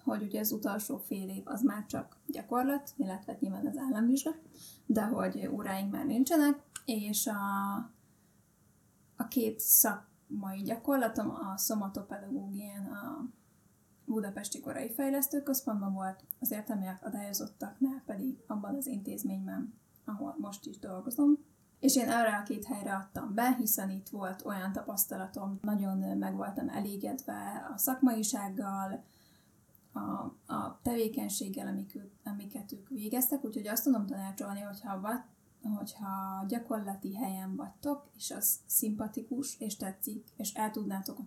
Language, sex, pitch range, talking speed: Hungarian, female, 205-255 Hz, 125 wpm